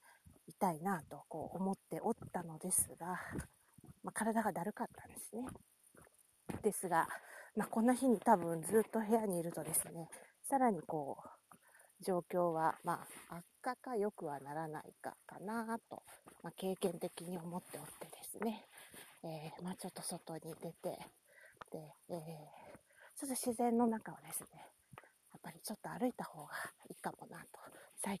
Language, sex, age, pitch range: Japanese, female, 40-59, 170-230 Hz